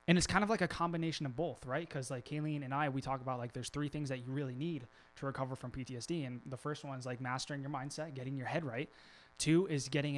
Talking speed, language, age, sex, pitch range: 270 wpm, English, 20-39, male, 130-160 Hz